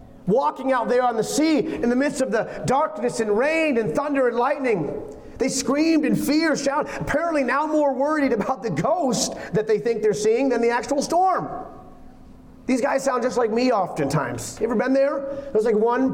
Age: 30-49